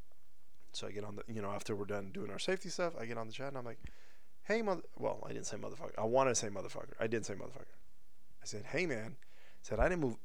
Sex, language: male, English